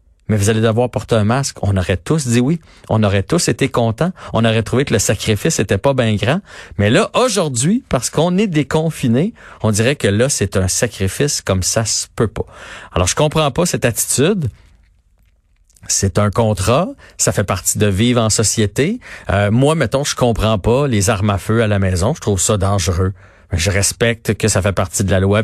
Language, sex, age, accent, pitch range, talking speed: French, male, 40-59, Canadian, 100-140 Hz, 210 wpm